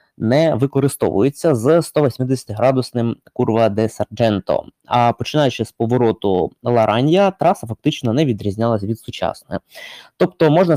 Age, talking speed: 20-39, 110 wpm